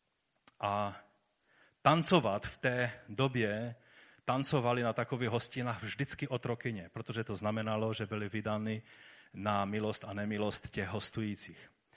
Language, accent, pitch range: Czech, native, 105-125 Hz